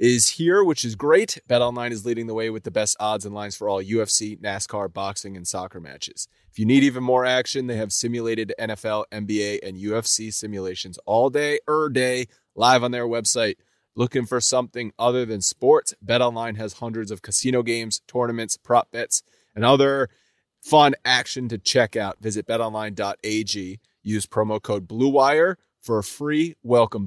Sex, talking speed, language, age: male, 175 wpm, English, 30-49